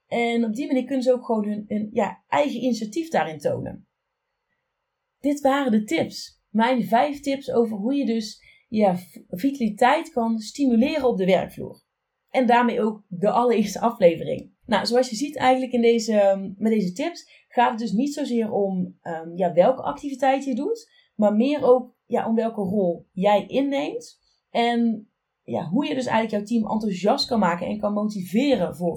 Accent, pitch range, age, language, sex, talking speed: Dutch, 205-260 Hz, 30-49, Dutch, female, 160 wpm